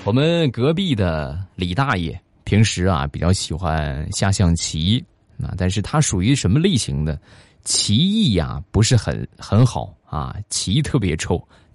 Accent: native